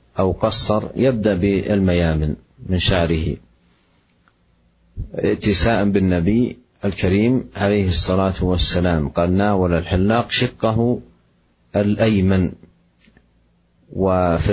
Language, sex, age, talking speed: Indonesian, male, 50-69, 75 wpm